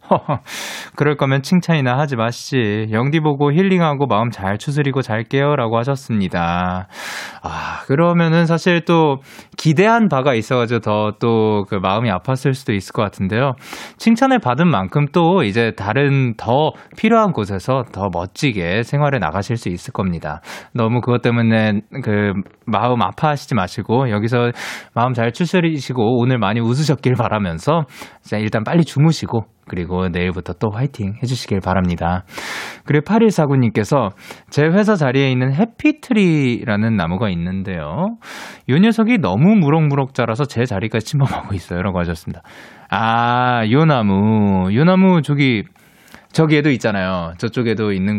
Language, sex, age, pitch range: Korean, male, 20-39, 105-165 Hz